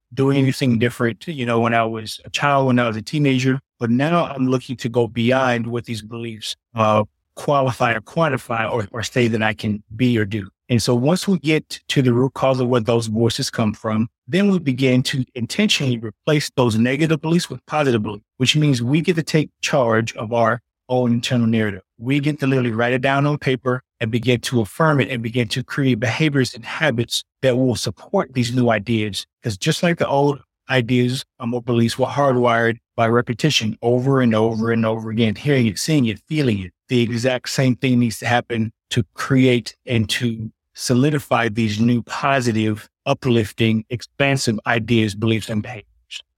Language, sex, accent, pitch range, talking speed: English, male, American, 115-135 Hz, 190 wpm